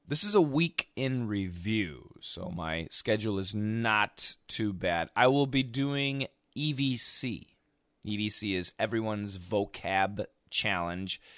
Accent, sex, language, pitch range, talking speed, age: American, male, English, 100-140 Hz, 120 wpm, 30-49